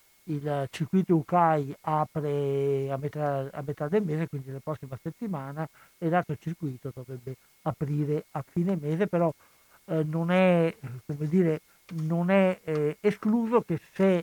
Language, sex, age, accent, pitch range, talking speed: Italian, male, 60-79, native, 140-175 Hz, 125 wpm